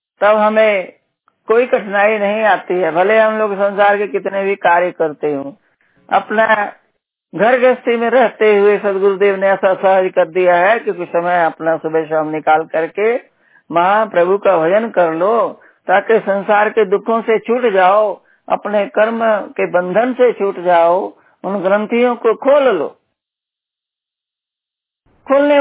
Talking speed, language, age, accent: 150 wpm, Hindi, 60-79, native